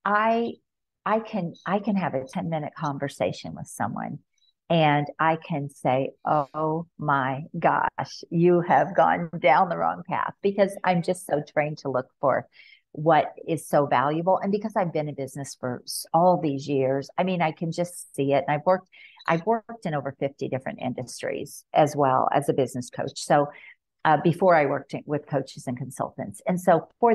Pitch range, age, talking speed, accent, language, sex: 135-175 Hz, 50-69, 185 wpm, American, English, female